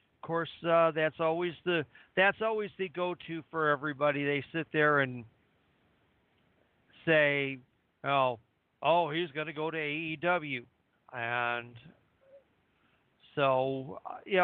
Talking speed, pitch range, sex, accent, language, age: 115 wpm, 125-175 Hz, male, American, English, 50-69